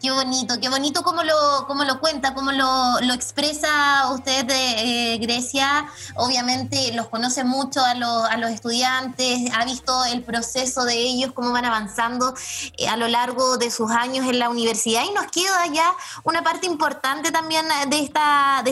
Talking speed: 180 wpm